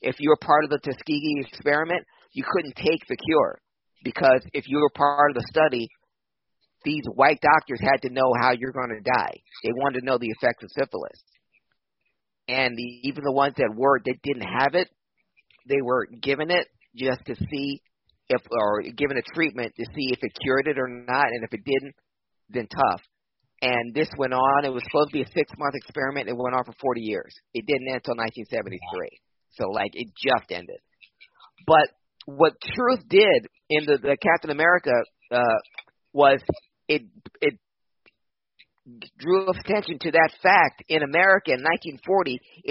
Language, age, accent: English, 50-69, American